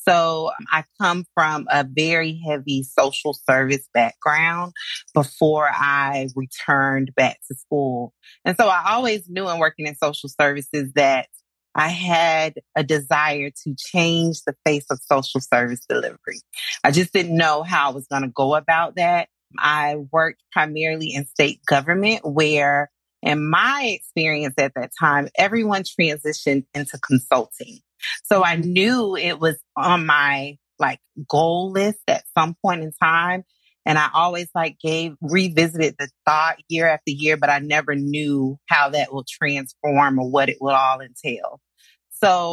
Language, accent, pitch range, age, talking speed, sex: English, American, 140-170 Hz, 30-49, 155 wpm, female